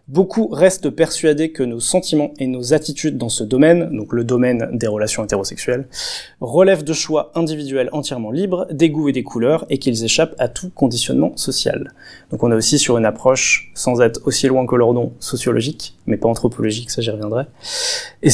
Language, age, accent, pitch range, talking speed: French, 20-39, French, 120-155 Hz, 195 wpm